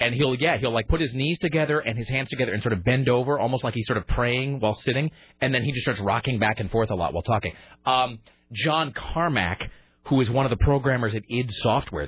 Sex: male